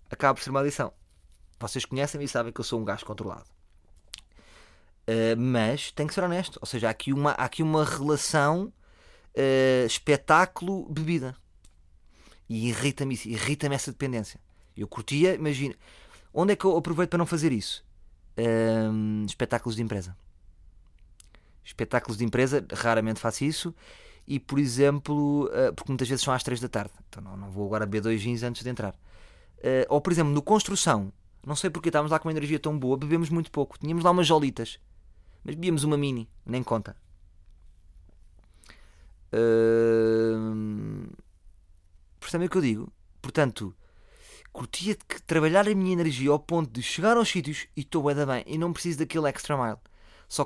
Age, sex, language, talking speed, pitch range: 20-39, male, Portuguese, 165 wpm, 105-150 Hz